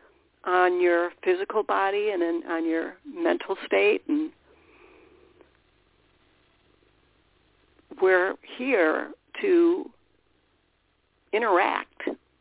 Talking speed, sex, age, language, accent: 75 wpm, female, 60-79, English, American